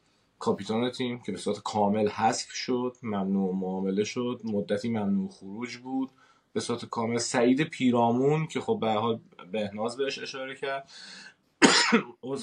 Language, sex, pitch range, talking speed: Persian, male, 110-135 Hz, 140 wpm